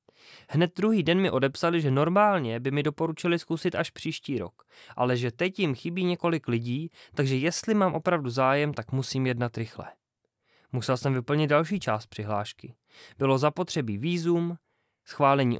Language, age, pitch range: Czech, 20-39, 125-165 Hz